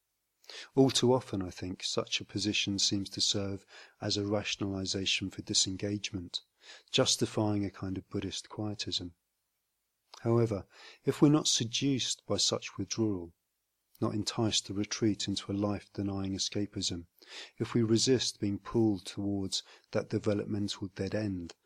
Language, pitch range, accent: English, 95-110 Hz, British